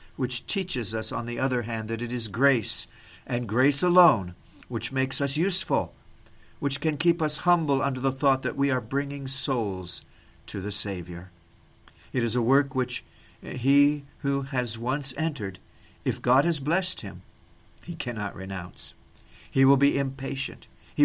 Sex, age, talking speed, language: male, 60-79, 165 wpm, English